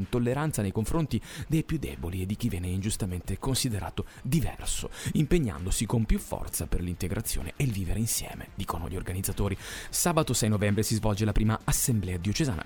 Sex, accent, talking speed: male, native, 165 wpm